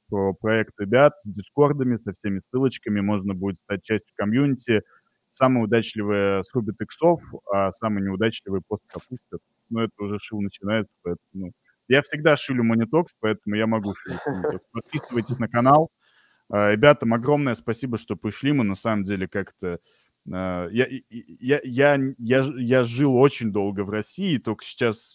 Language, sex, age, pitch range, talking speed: Russian, male, 20-39, 100-130 Hz, 130 wpm